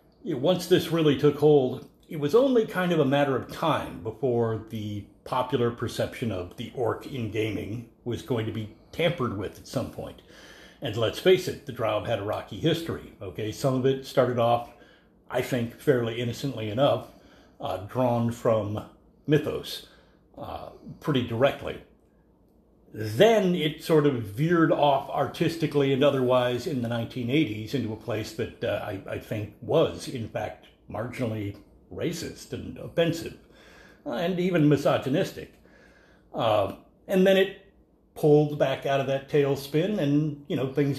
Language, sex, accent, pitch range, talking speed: English, male, American, 120-150 Hz, 155 wpm